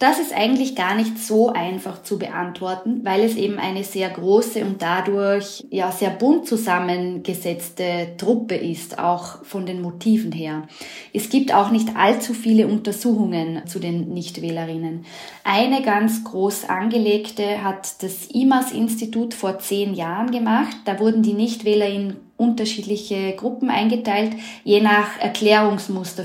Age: 20-39